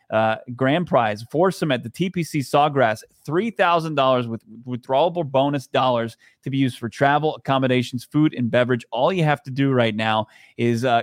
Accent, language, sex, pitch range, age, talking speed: American, English, male, 115-140 Hz, 30-49, 185 wpm